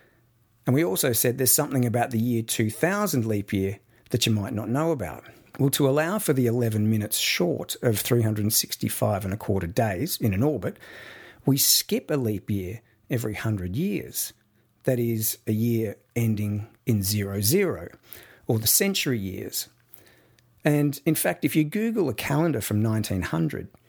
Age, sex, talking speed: 50-69, male, 160 wpm